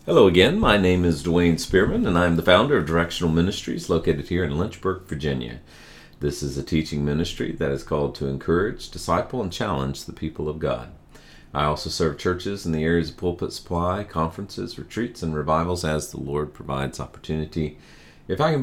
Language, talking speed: English, 185 wpm